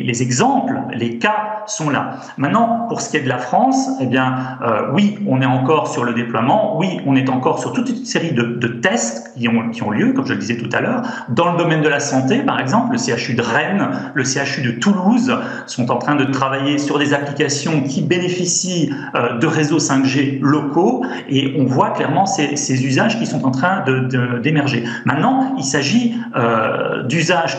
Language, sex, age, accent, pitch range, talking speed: French, male, 40-59, French, 130-175 Hz, 200 wpm